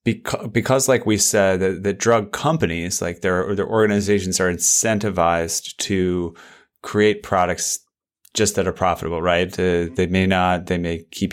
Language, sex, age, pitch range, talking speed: English, male, 30-49, 85-100 Hz, 155 wpm